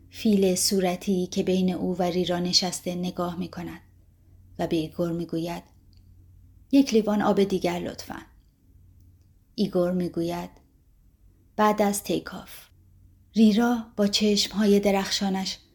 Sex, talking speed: female, 120 wpm